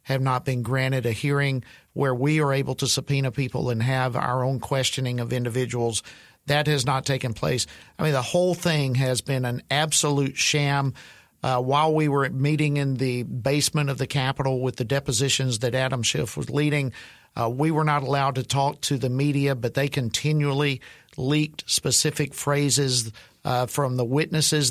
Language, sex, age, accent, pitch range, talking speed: English, male, 50-69, American, 130-150 Hz, 180 wpm